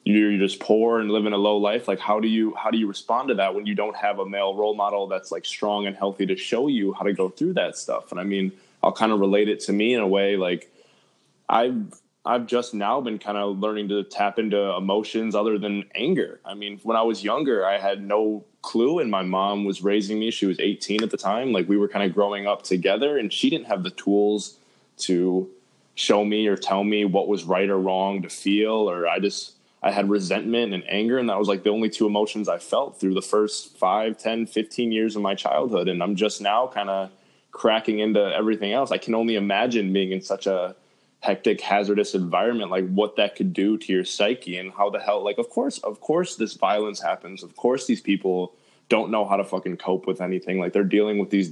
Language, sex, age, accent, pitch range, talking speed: English, male, 20-39, American, 95-110 Hz, 240 wpm